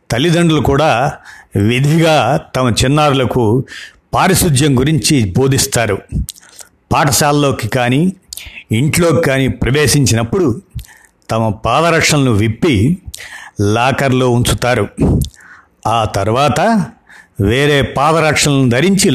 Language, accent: Telugu, native